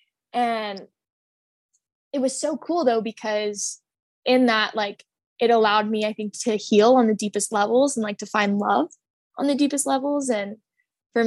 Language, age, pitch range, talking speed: English, 10-29, 210-245 Hz, 170 wpm